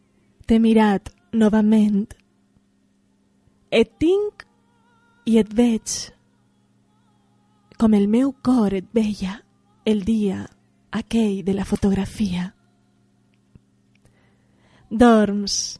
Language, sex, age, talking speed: Spanish, female, 20-39, 80 wpm